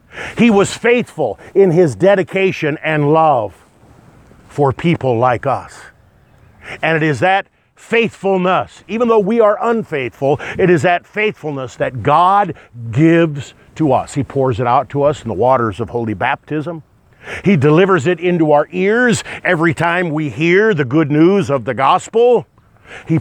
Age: 50-69